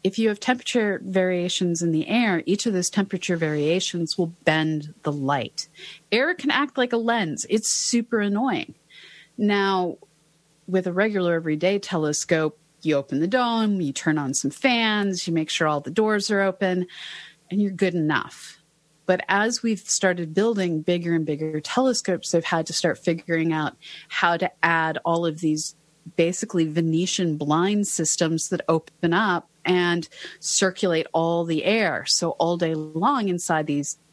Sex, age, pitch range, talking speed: female, 30-49, 160-200 Hz, 165 wpm